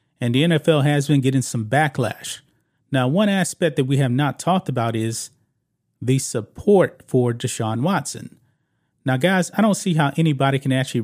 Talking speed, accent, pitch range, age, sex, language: 175 wpm, American, 125-150 Hz, 30-49, male, English